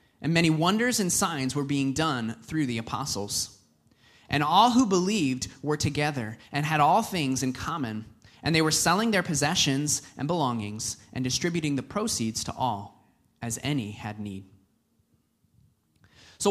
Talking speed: 155 wpm